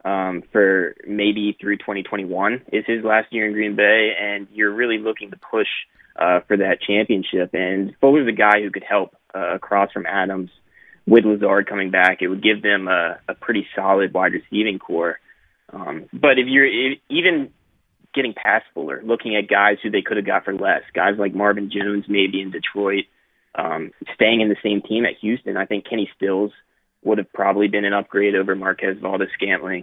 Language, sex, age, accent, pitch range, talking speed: English, male, 20-39, American, 100-110 Hz, 195 wpm